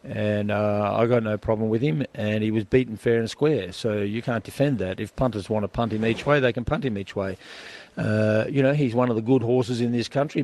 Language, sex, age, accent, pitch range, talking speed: English, male, 50-69, Australian, 110-130 Hz, 265 wpm